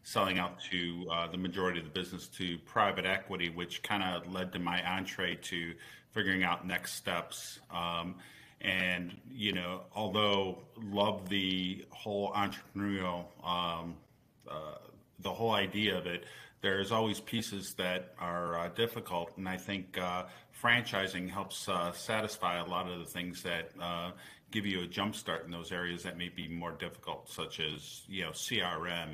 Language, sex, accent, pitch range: English, male, American, 90-100 Hz